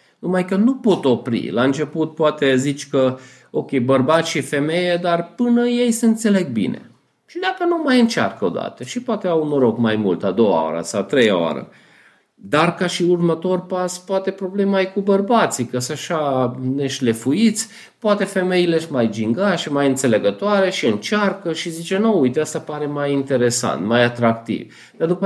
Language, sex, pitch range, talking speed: Romanian, male, 125-185 Hz, 185 wpm